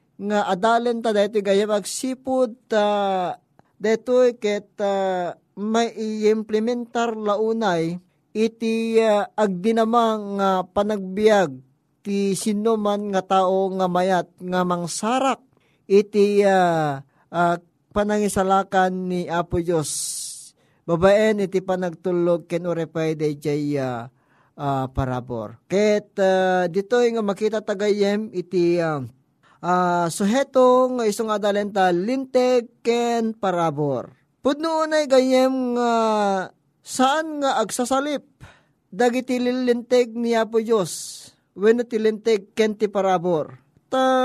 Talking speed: 105 wpm